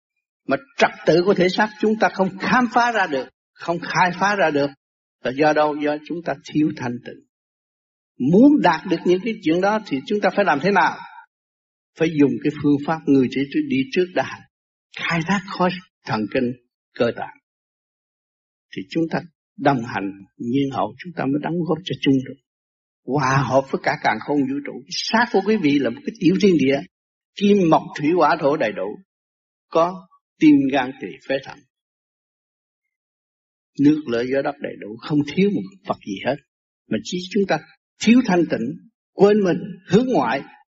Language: Vietnamese